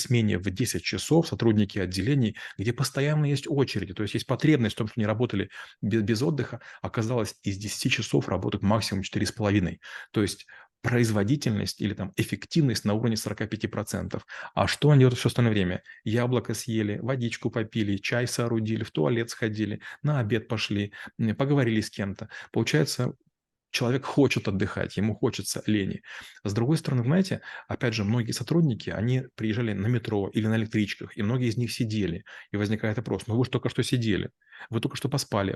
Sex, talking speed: male, 170 wpm